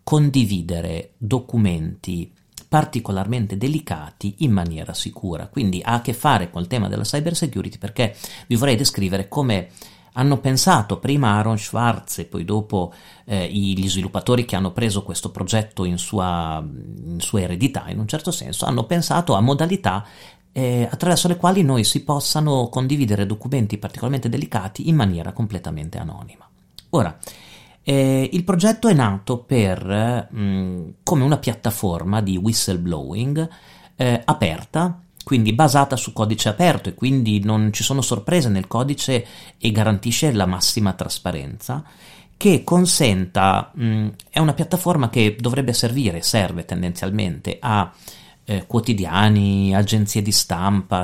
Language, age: Italian, 40-59